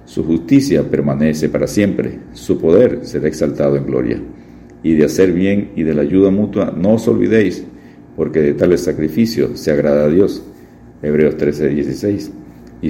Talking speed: 165 wpm